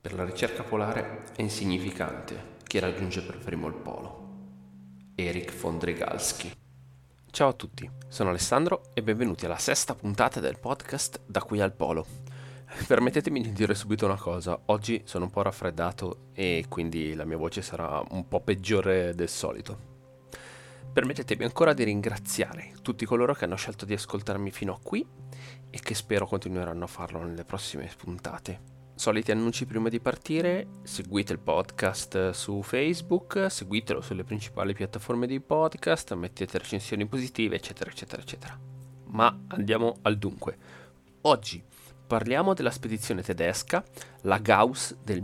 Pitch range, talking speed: 90-120 Hz, 145 wpm